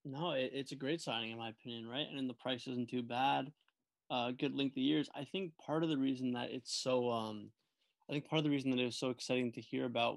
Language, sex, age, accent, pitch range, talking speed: English, male, 20-39, American, 120-140 Hz, 255 wpm